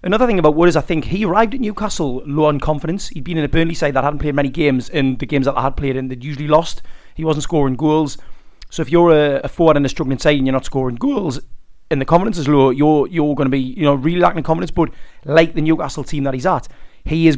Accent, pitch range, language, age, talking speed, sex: British, 140-175 Hz, English, 30-49, 275 wpm, male